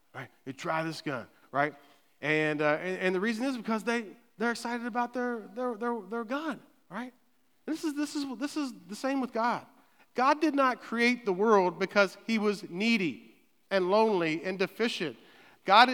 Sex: male